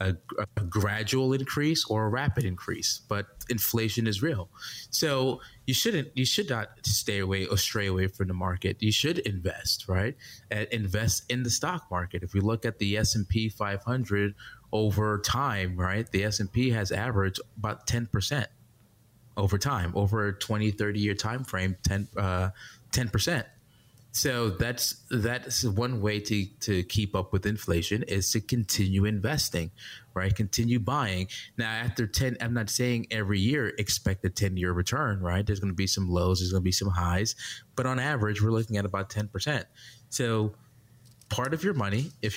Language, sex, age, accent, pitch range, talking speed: English, male, 20-39, American, 100-120 Hz, 170 wpm